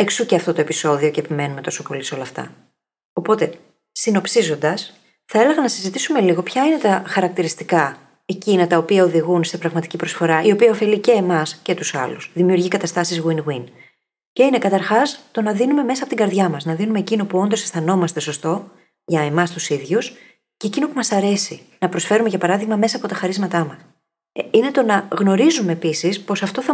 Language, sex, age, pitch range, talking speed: Greek, female, 30-49, 160-220 Hz, 190 wpm